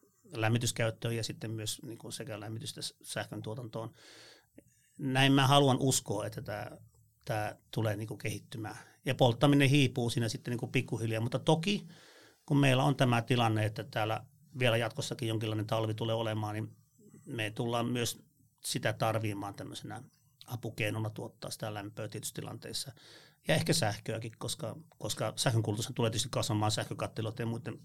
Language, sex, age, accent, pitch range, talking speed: Finnish, male, 30-49, native, 110-135 Hz, 140 wpm